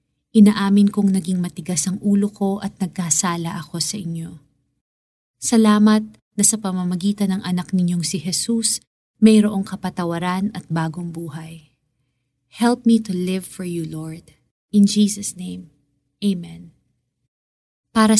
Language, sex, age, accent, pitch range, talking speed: Filipino, female, 20-39, native, 160-205 Hz, 125 wpm